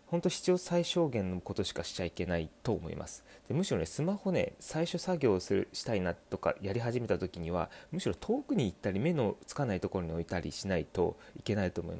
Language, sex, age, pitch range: Japanese, male, 30-49, 95-145 Hz